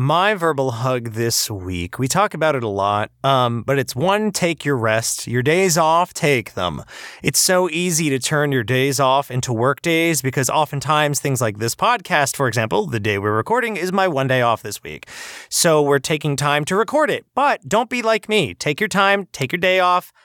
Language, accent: English, American